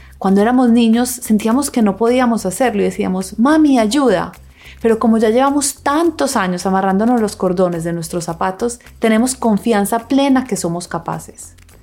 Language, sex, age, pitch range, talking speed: Spanish, female, 30-49, 170-225 Hz, 150 wpm